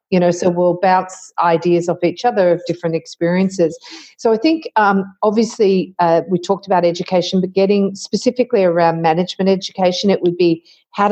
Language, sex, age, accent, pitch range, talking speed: English, female, 40-59, Australian, 165-200 Hz, 175 wpm